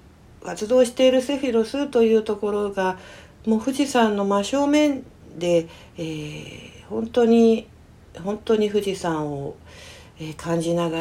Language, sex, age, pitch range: Japanese, female, 60-79, 160-225 Hz